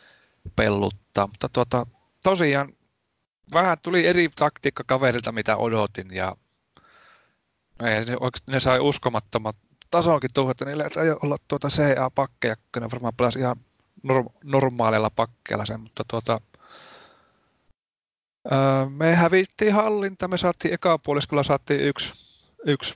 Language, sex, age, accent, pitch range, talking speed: Finnish, male, 30-49, native, 115-140 Hz, 120 wpm